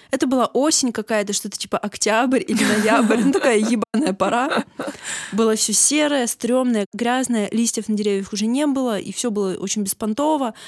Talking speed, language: 165 wpm, Russian